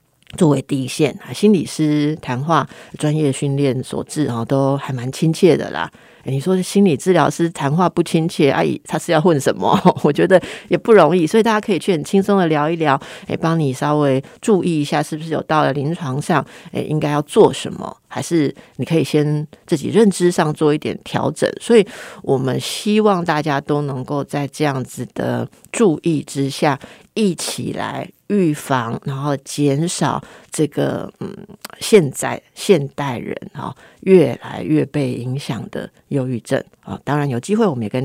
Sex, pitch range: female, 135-170 Hz